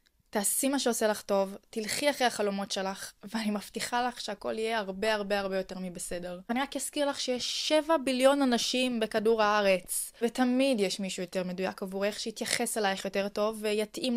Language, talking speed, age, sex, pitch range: Hebrew, 170 wpm, 20-39, female, 190-235 Hz